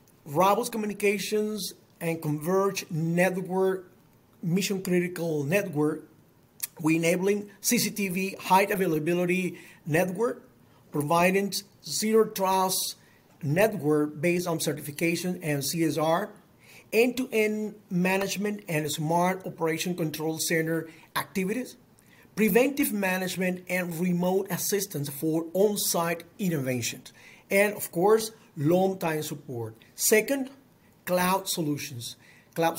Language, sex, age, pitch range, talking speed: English, male, 50-69, 155-200 Hz, 90 wpm